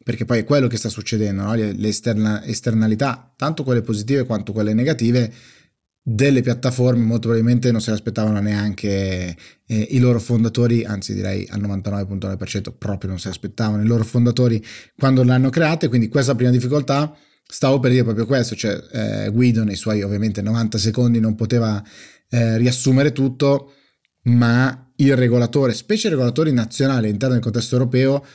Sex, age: male, 30-49